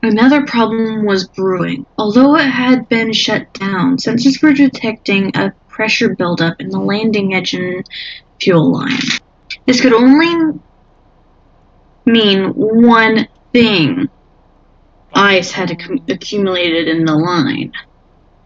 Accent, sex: American, female